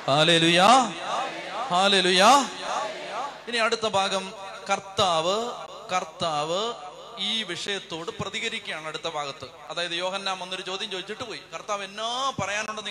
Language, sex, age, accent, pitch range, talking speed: Malayalam, male, 30-49, native, 155-180 Hz, 90 wpm